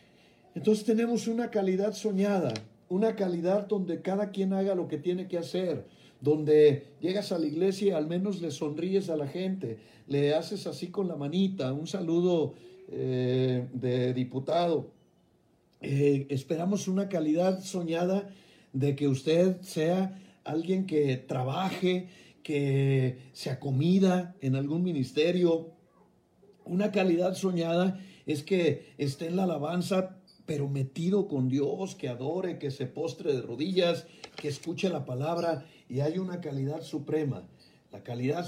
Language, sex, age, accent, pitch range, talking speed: Spanish, male, 50-69, Mexican, 140-185 Hz, 140 wpm